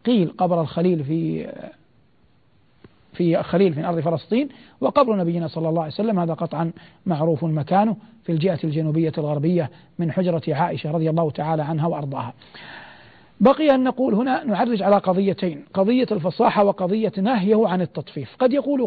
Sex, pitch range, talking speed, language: male, 165-205 Hz, 145 wpm, Arabic